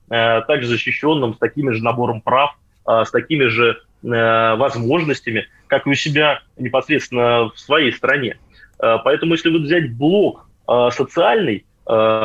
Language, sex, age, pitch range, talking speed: Russian, male, 20-39, 115-150 Hz, 120 wpm